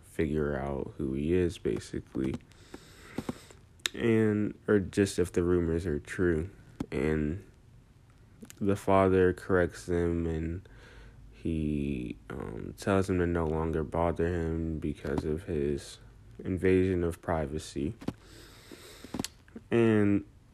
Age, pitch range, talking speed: 20-39, 80-100 Hz, 105 wpm